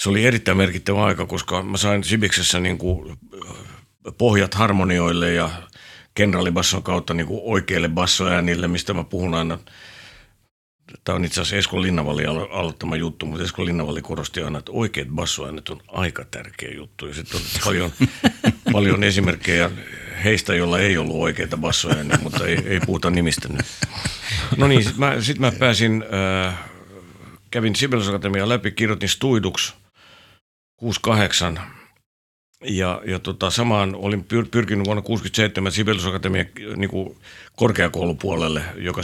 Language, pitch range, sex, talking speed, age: Finnish, 85-105 Hz, male, 130 wpm, 60-79